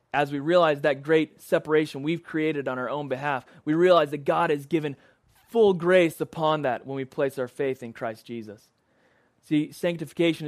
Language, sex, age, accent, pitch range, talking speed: English, male, 30-49, American, 135-165 Hz, 185 wpm